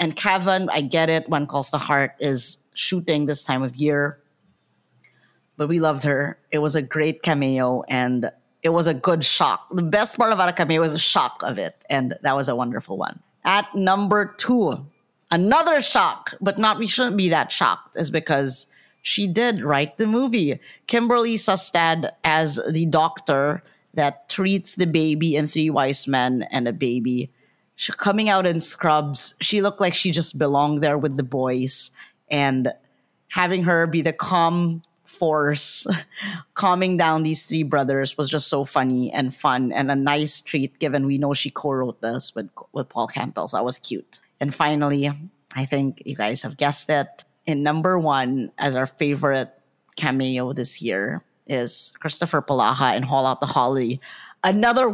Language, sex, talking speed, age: English, female, 175 wpm, 30-49